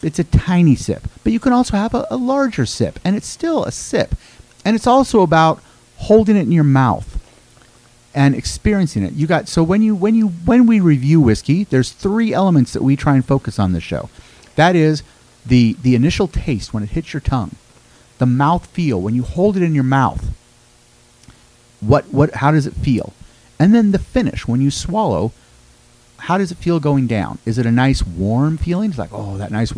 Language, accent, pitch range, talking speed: English, American, 115-170 Hz, 210 wpm